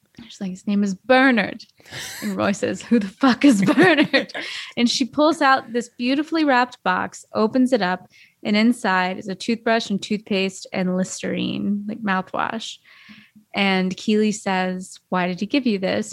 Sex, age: female, 20-39